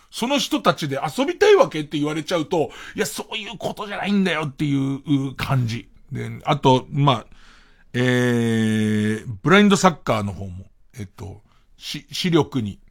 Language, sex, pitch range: Japanese, male, 110-180 Hz